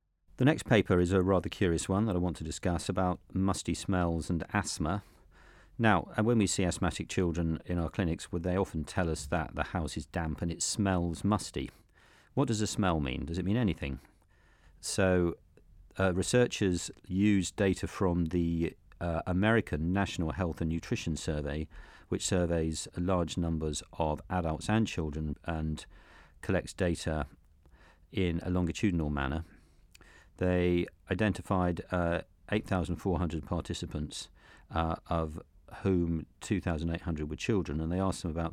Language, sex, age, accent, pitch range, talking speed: English, male, 40-59, British, 80-95 Hz, 150 wpm